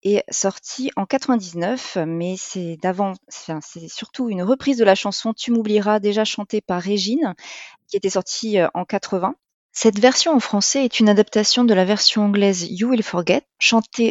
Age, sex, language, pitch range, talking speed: 30-49, female, French, 190-235 Hz, 175 wpm